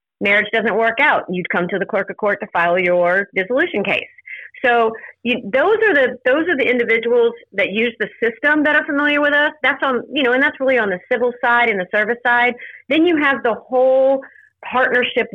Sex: female